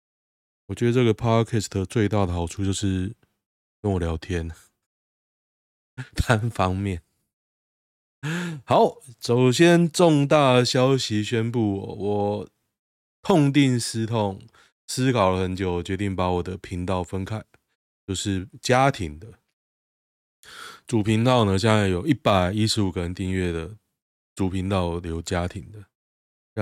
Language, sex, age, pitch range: Chinese, male, 20-39, 90-115 Hz